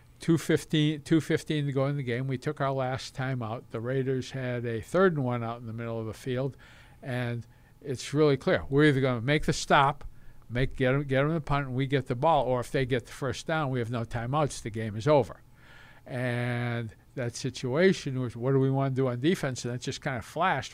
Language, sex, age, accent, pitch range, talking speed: English, male, 60-79, American, 120-145 Hz, 235 wpm